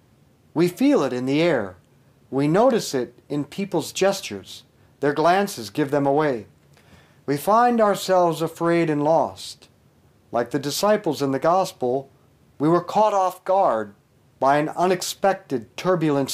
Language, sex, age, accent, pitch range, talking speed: English, male, 50-69, American, 130-190 Hz, 140 wpm